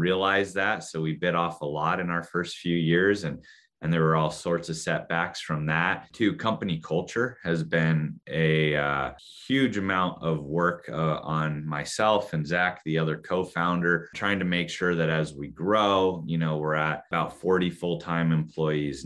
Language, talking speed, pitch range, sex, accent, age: English, 185 wpm, 80-90 Hz, male, American, 30-49